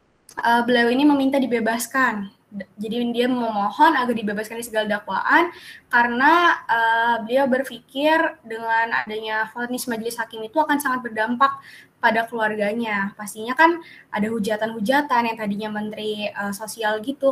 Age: 20-39